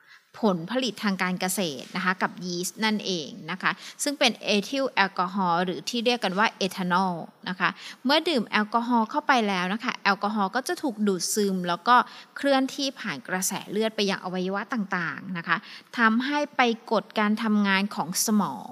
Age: 20-39